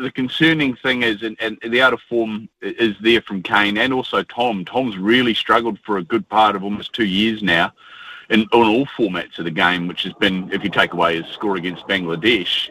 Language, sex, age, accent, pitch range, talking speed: English, male, 40-59, Australian, 100-130 Hz, 220 wpm